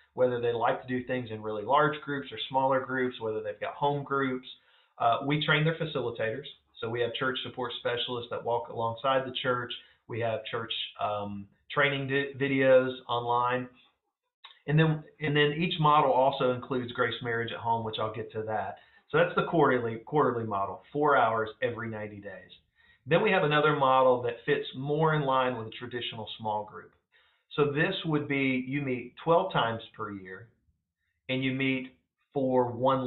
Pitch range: 115-140 Hz